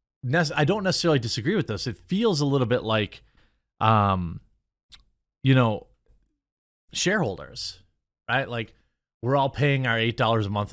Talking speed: 140 wpm